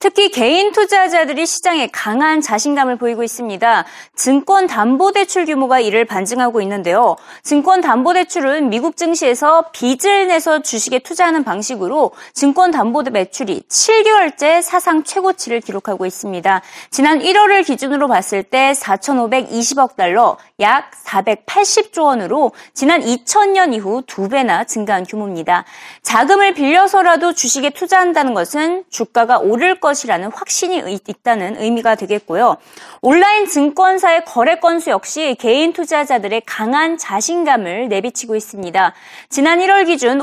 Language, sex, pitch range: Korean, female, 225-345 Hz